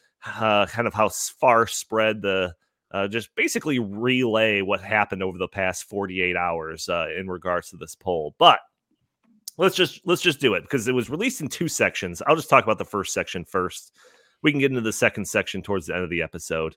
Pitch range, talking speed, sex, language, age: 105-155 Hz, 210 wpm, male, English, 30-49